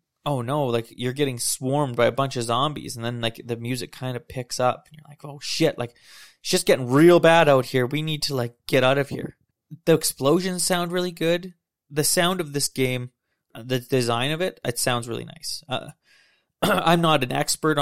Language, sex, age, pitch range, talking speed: English, male, 20-39, 120-155 Hz, 215 wpm